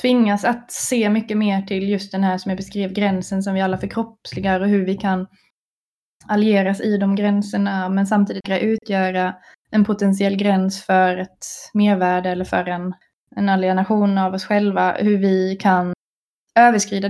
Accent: native